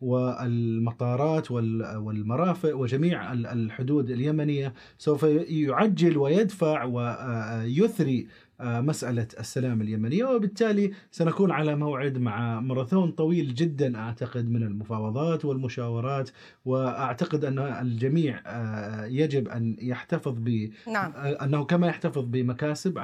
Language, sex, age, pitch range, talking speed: Arabic, male, 30-49, 125-160 Hz, 90 wpm